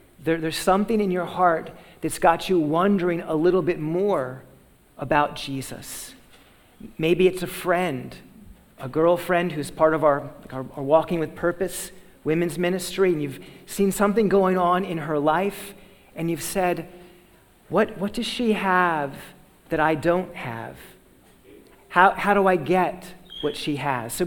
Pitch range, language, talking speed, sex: 160-195 Hz, English, 155 wpm, male